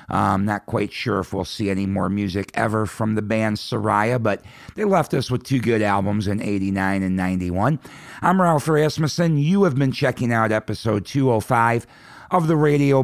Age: 50-69